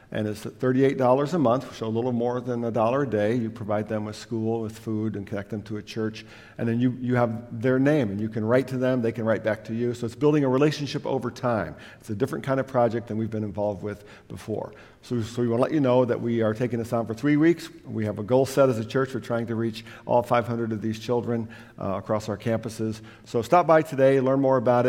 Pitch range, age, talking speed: 110-125 Hz, 50-69, 270 wpm